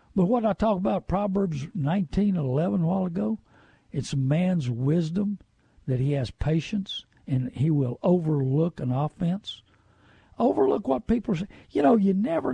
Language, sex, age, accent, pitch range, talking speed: English, male, 60-79, American, 150-210 Hz, 155 wpm